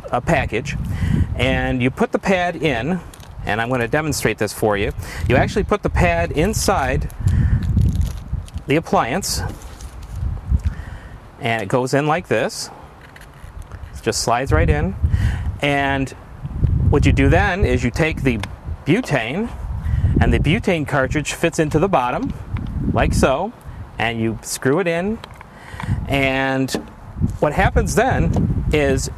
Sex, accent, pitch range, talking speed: male, American, 110-160 Hz, 135 wpm